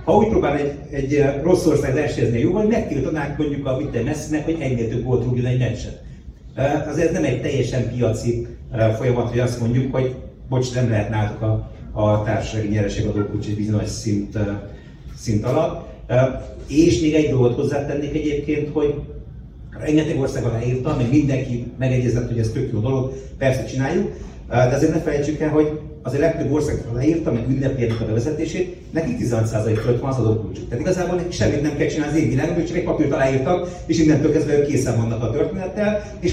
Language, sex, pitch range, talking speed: Hungarian, male, 115-150 Hz, 170 wpm